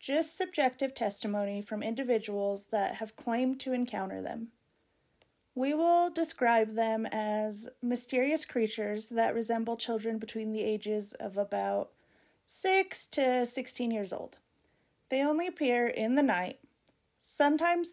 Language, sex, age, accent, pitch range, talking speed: English, female, 30-49, American, 220-275 Hz, 125 wpm